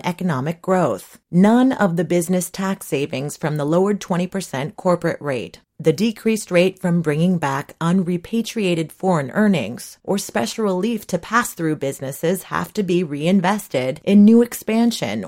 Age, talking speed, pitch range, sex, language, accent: 30-49, 145 wpm, 170-220 Hz, female, English, American